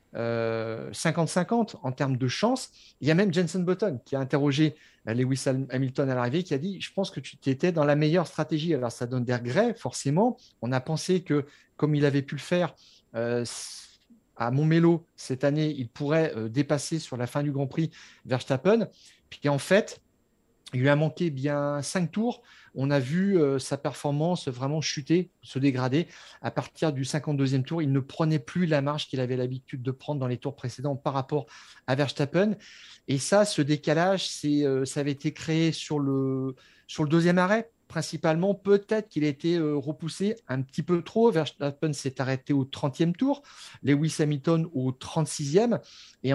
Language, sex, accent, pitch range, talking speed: French, male, French, 135-170 Hz, 185 wpm